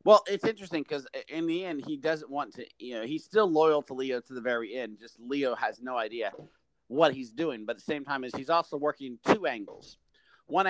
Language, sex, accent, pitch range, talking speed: English, male, American, 125-160 Hz, 235 wpm